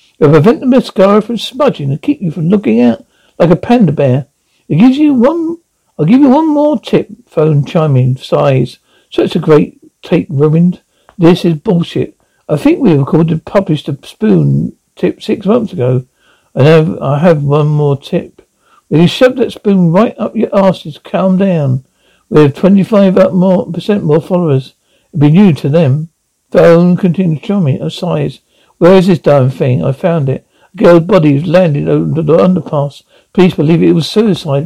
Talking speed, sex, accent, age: 170 wpm, male, British, 60-79